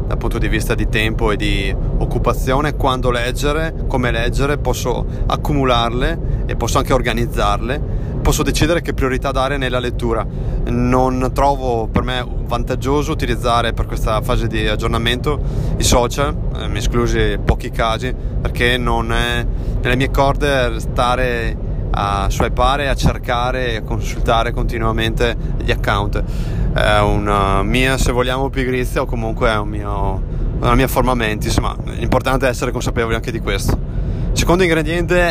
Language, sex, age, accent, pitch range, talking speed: Italian, male, 30-49, native, 115-135 Hz, 150 wpm